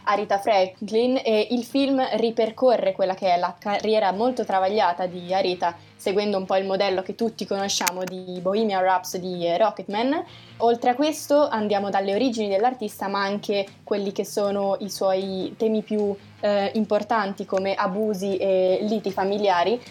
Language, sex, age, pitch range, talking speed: Italian, female, 20-39, 190-220 Hz, 155 wpm